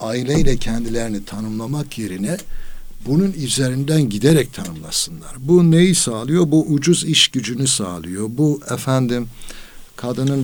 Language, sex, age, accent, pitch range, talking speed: Turkish, male, 60-79, native, 100-135 Hz, 110 wpm